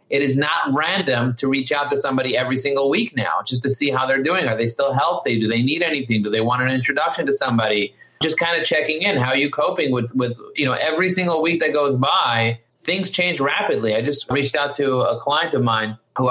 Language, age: English, 30-49